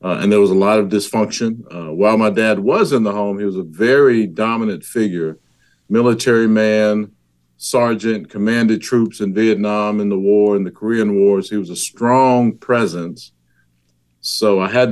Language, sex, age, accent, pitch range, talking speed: English, male, 50-69, American, 90-110 Hz, 175 wpm